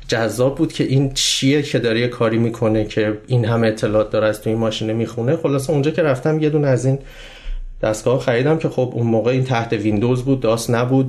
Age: 30-49